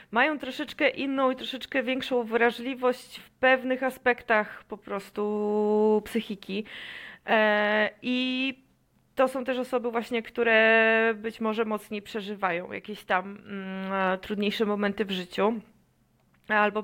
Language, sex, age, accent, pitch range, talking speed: Polish, female, 20-39, native, 215-250 Hz, 110 wpm